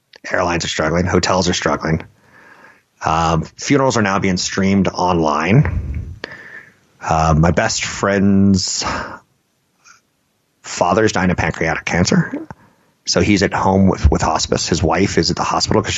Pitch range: 85-100 Hz